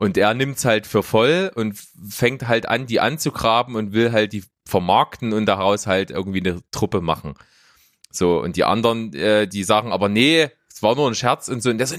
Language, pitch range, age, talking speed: German, 95-140 Hz, 30-49, 215 wpm